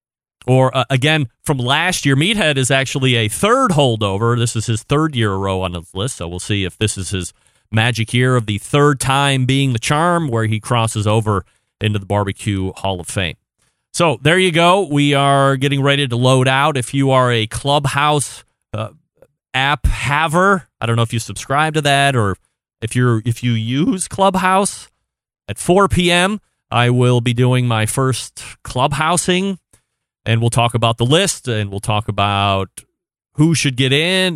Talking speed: 185 wpm